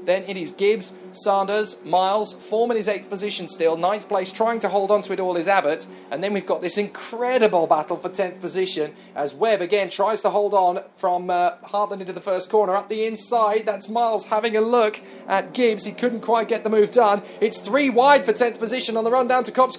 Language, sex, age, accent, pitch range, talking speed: English, male, 30-49, British, 185-230 Hz, 230 wpm